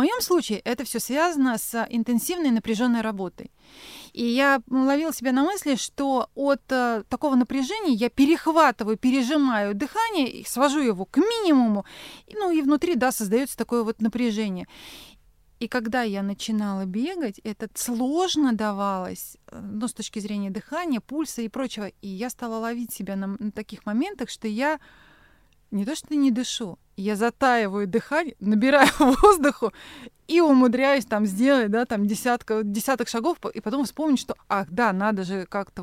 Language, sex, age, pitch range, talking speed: Russian, female, 30-49, 215-275 Hz, 155 wpm